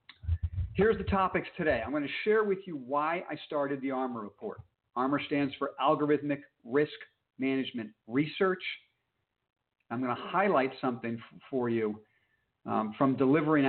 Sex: male